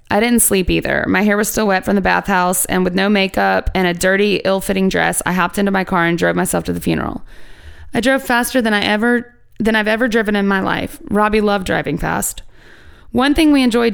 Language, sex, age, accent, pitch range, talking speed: English, female, 20-39, American, 190-235 Hz, 230 wpm